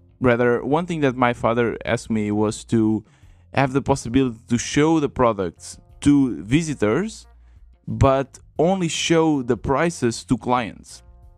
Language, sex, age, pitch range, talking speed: English, male, 20-39, 110-135 Hz, 135 wpm